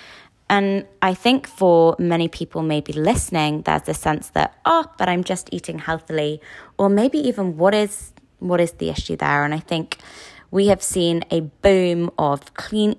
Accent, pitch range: British, 145-180 Hz